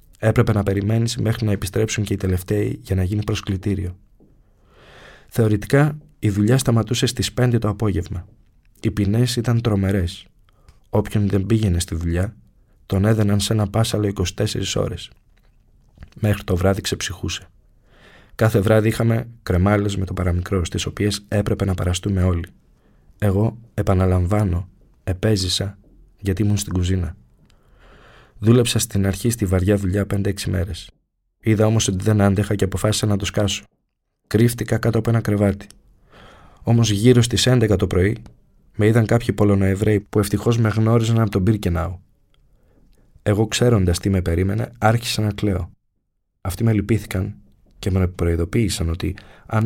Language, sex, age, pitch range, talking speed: Greek, male, 20-39, 95-110 Hz, 140 wpm